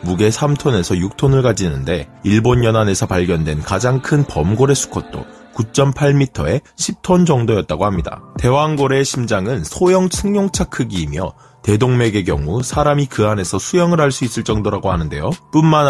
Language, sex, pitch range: Korean, male, 105-155 Hz